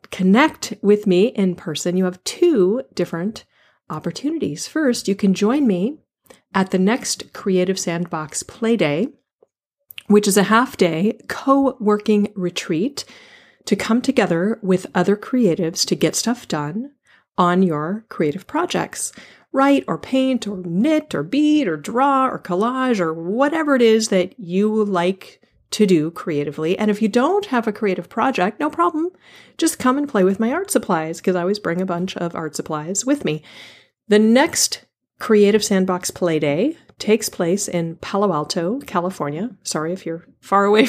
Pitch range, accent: 180-240 Hz, American